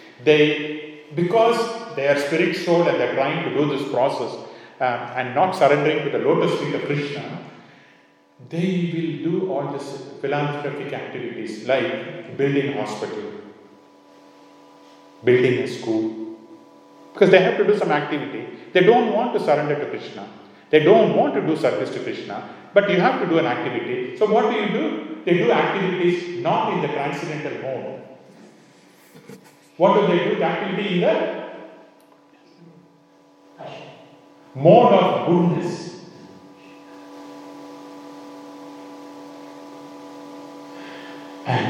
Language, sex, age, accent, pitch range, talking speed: English, male, 40-59, Indian, 100-160 Hz, 135 wpm